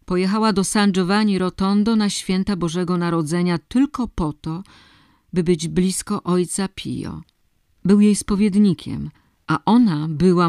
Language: Polish